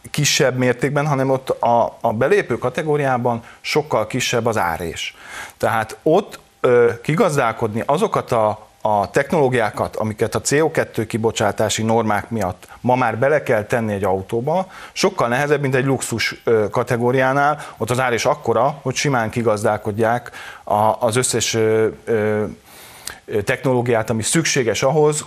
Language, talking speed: Hungarian, 120 wpm